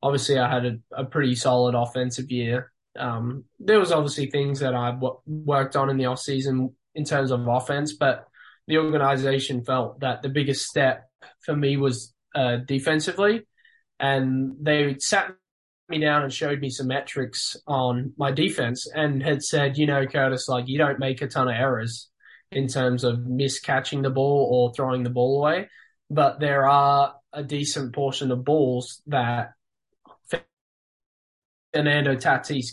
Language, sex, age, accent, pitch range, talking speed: English, male, 10-29, Australian, 125-150 Hz, 160 wpm